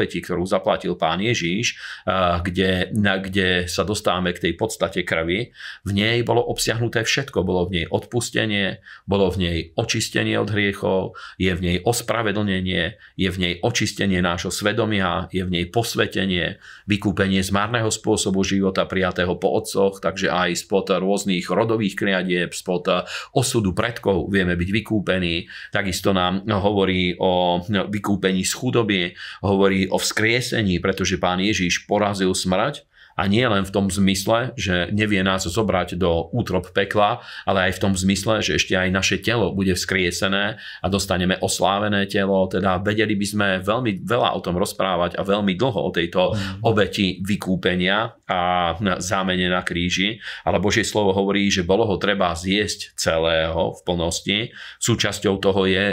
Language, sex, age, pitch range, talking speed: Slovak, male, 40-59, 90-105 Hz, 150 wpm